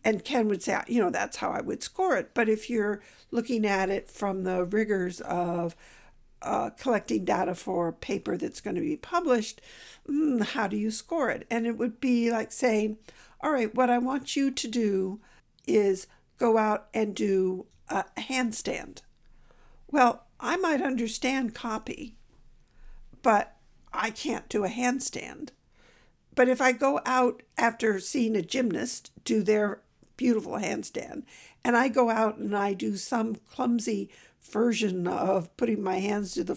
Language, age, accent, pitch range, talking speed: English, 60-79, American, 210-260 Hz, 165 wpm